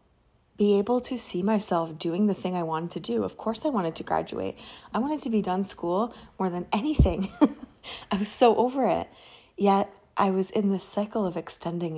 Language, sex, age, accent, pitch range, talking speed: English, female, 20-39, American, 165-220 Hz, 200 wpm